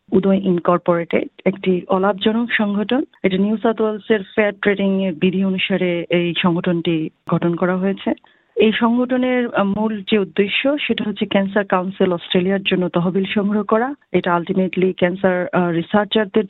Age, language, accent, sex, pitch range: 40-59, Bengali, native, female, 175-215 Hz